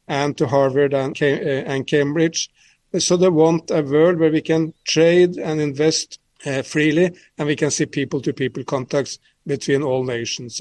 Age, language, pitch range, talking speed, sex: 50-69, English, 130-155 Hz, 145 wpm, male